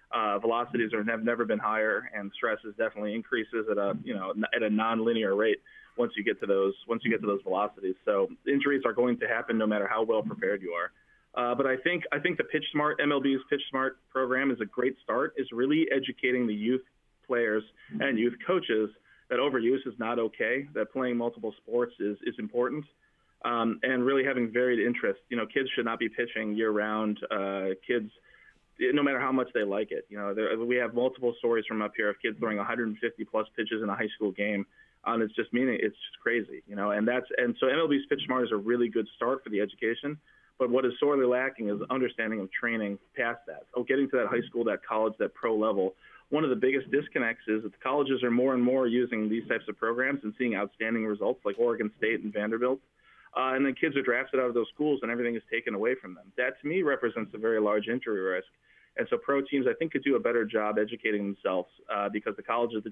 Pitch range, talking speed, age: 110-130 Hz, 235 wpm, 20-39